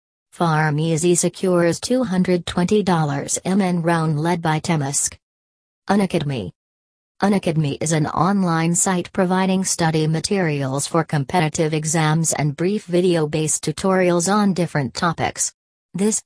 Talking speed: 105 wpm